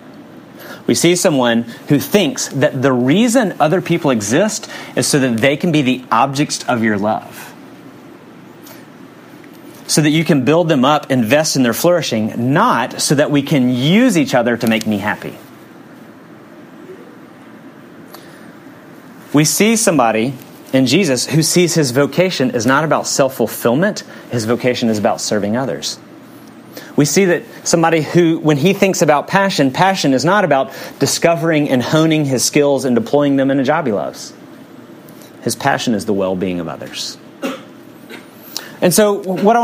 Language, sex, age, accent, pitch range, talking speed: English, male, 30-49, American, 130-180 Hz, 155 wpm